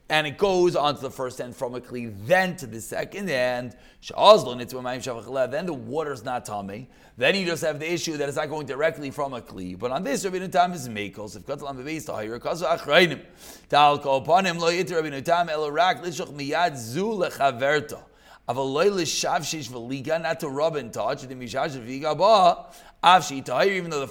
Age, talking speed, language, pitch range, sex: 30-49, 110 wpm, English, 135-170 Hz, male